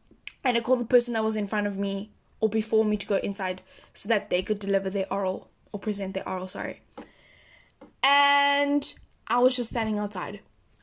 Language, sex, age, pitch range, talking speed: English, female, 10-29, 190-235 Hz, 195 wpm